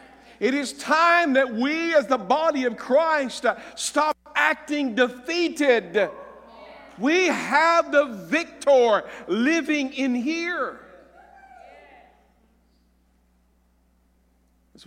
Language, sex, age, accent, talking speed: English, male, 50-69, American, 85 wpm